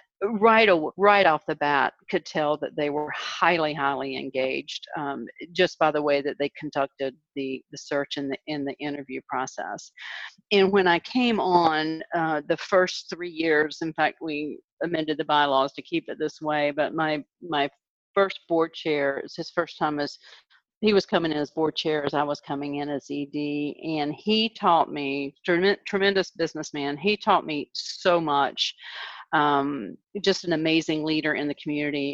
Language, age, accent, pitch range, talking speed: English, 50-69, American, 150-185 Hz, 180 wpm